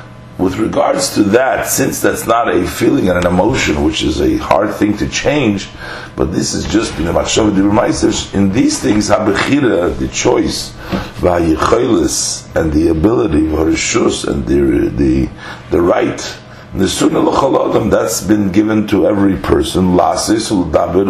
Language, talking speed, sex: English, 140 wpm, male